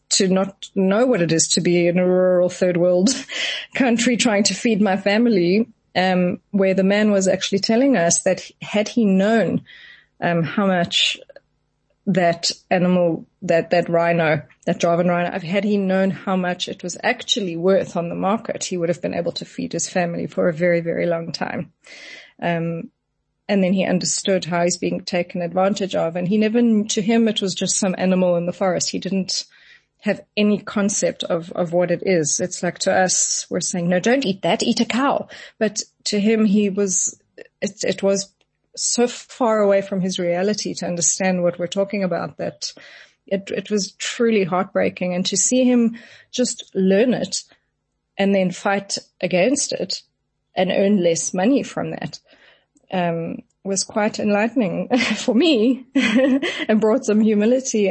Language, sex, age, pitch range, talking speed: English, female, 30-49, 180-220 Hz, 175 wpm